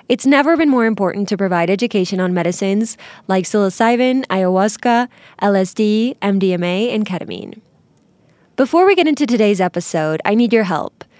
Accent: American